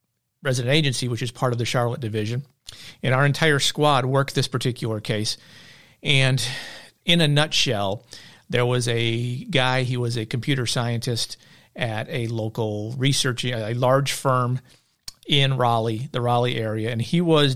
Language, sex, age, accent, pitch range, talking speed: English, male, 50-69, American, 120-140 Hz, 155 wpm